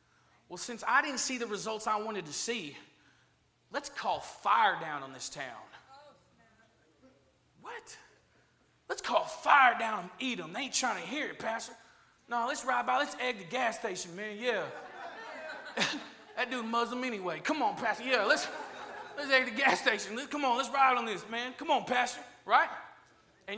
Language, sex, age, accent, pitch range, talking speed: English, male, 30-49, American, 215-260 Hz, 175 wpm